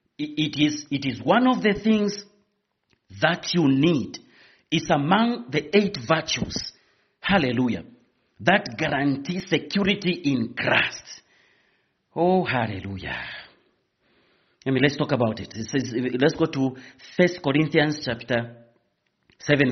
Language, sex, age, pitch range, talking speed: English, male, 40-59, 135-195 Hz, 120 wpm